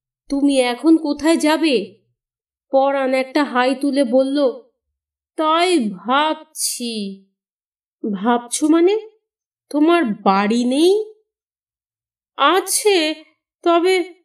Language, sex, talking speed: Bengali, female, 70 wpm